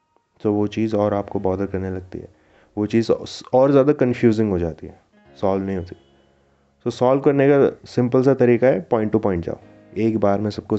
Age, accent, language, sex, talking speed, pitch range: 30-49, native, Hindi, male, 205 wpm, 95-115 Hz